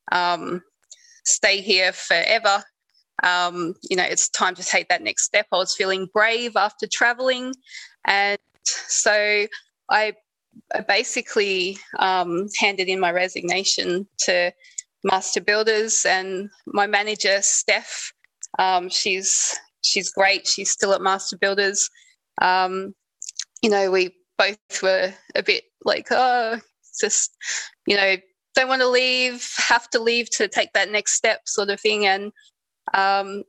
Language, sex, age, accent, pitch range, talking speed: English, female, 20-39, Australian, 190-240 Hz, 135 wpm